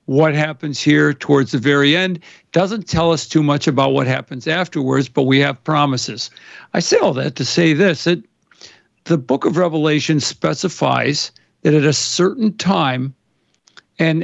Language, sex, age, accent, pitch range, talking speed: English, male, 60-79, American, 140-165 Hz, 165 wpm